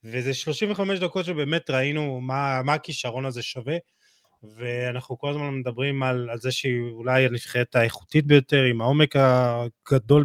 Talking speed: 145 wpm